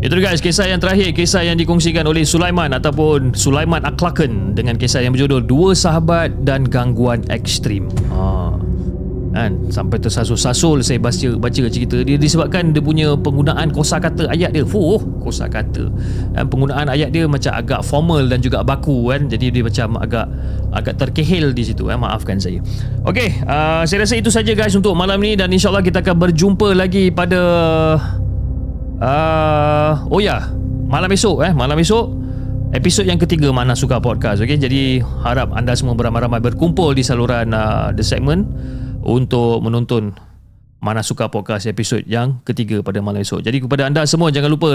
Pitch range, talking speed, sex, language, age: 110-160 Hz, 170 wpm, male, Malay, 30-49